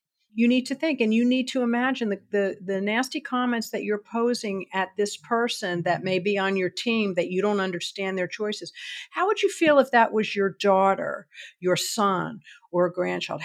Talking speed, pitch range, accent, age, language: 205 wpm, 180-225 Hz, American, 50-69, English